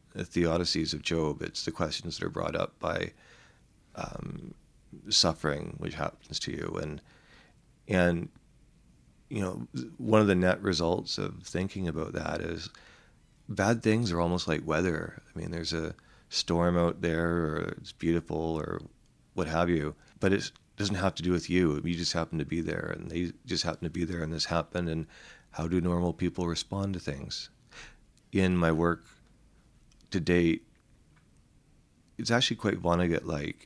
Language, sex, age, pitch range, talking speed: English, male, 40-59, 80-90 Hz, 170 wpm